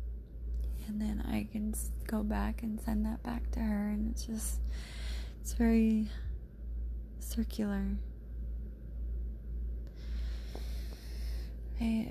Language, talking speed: English, 95 wpm